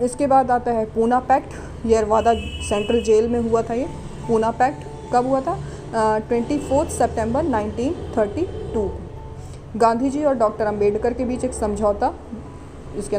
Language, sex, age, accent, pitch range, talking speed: Hindi, female, 20-39, native, 215-255 Hz, 145 wpm